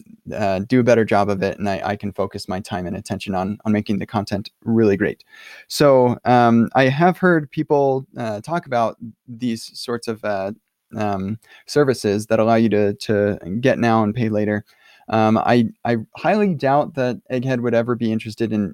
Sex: male